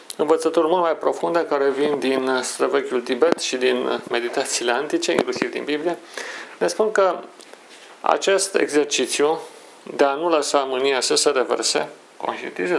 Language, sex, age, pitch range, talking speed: Romanian, male, 40-59, 145-215 Hz, 140 wpm